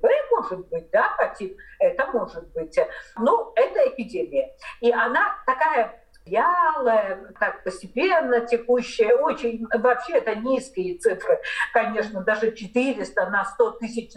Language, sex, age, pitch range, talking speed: Russian, female, 50-69, 225-365 Hz, 120 wpm